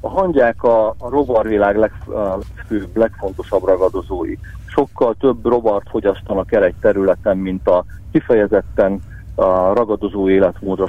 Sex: male